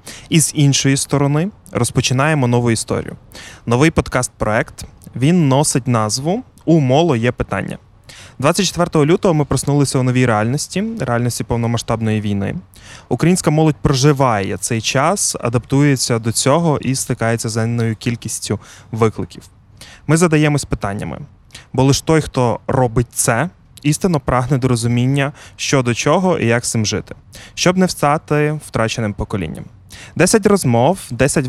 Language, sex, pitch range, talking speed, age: Ukrainian, male, 115-150 Hz, 130 wpm, 20-39